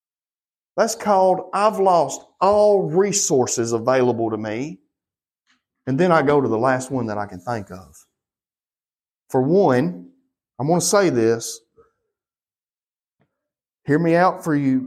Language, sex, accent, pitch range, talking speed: English, male, American, 130-190 Hz, 135 wpm